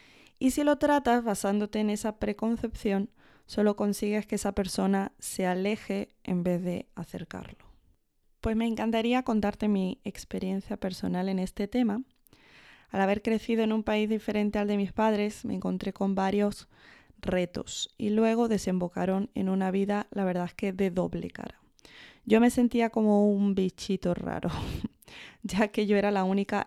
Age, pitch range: 20-39, 185-215 Hz